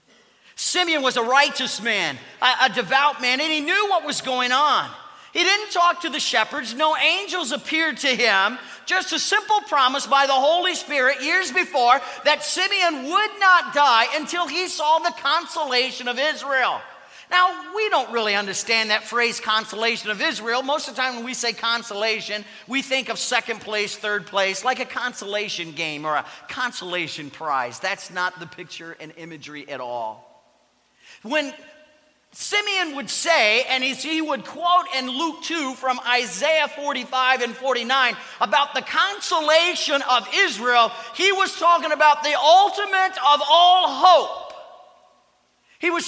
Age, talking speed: 40-59, 160 wpm